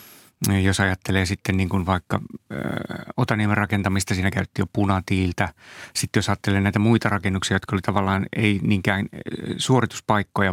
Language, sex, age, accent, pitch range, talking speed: Finnish, male, 30-49, native, 95-105 Hz, 140 wpm